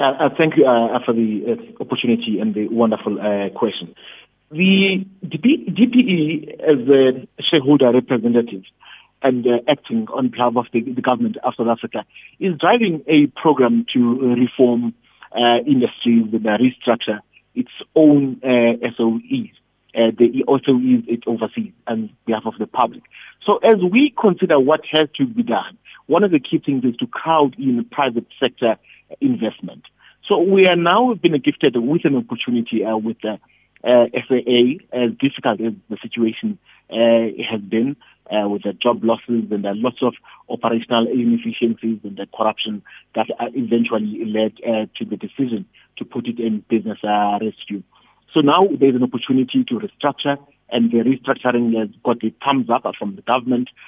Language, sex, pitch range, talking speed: English, male, 115-145 Hz, 165 wpm